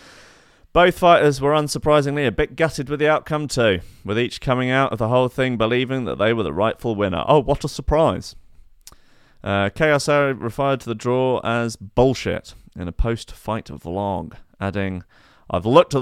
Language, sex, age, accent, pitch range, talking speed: English, male, 30-49, British, 105-140 Hz, 170 wpm